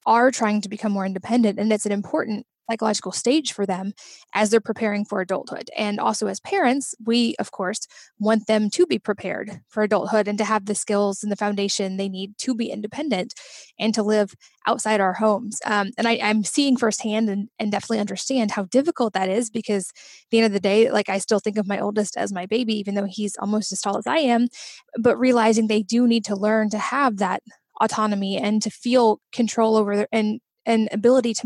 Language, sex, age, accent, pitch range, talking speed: English, female, 10-29, American, 200-230 Hz, 210 wpm